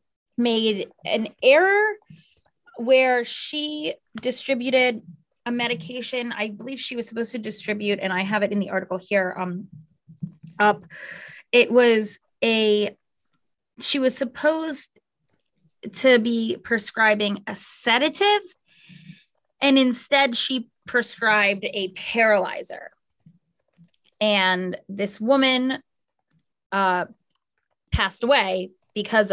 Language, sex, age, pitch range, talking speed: English, female, 20-39, 195-245 Hz, 100 wpm